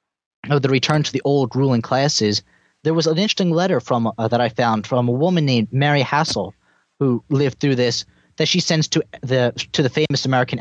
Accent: American